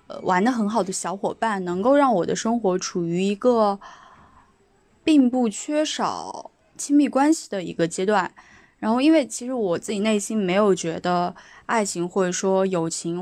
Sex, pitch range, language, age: female, 185-250 Hz, Chinese, 10-29